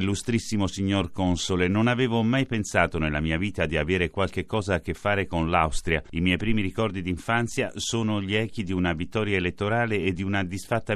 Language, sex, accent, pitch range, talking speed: Italian, male, native, 90-115 Hz, 190 wpm